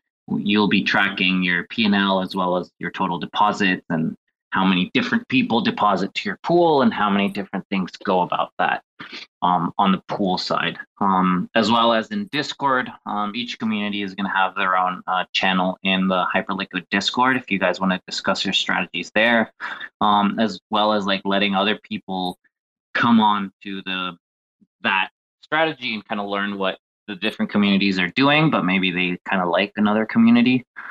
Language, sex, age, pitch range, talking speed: English, male, 20-39, 95-110 Hz, 185 wpm